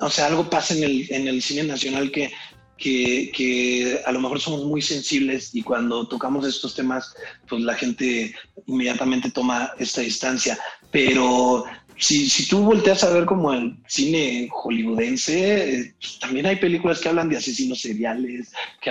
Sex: male